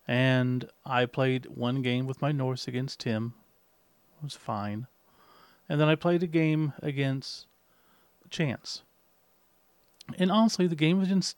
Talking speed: 135 wpm